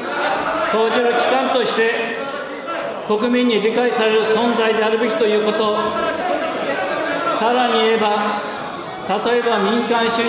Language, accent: Japanese, native